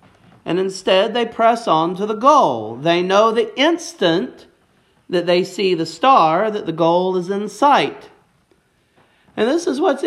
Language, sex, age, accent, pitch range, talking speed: English, male, 40-59, American, 160-215 Hz, 160 wpm